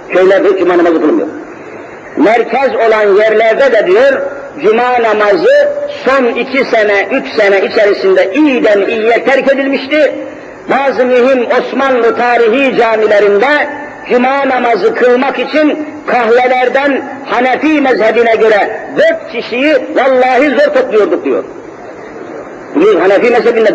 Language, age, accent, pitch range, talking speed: Turkish, 50-69, native, 230-295 Hz, 110 wpm